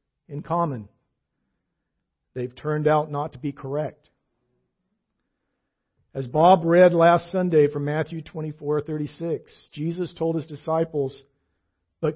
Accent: American